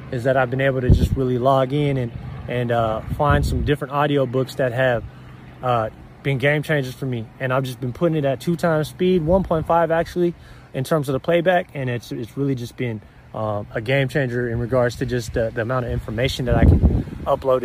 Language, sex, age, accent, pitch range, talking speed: English, male, 20-39, American, 120-155 Hz, 220 wpm